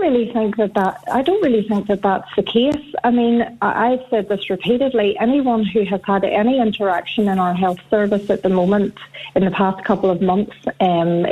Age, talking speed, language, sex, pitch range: 40-59, 200 wpm, English, female, 180-215 Hz